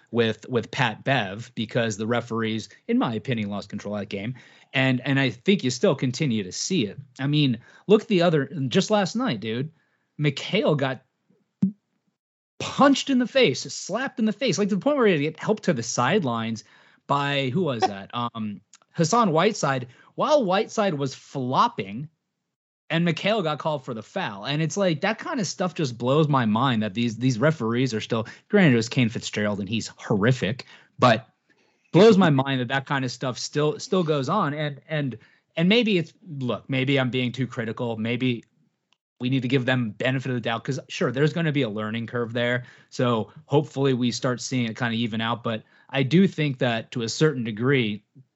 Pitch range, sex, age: 120-160 Hz, male, 30-49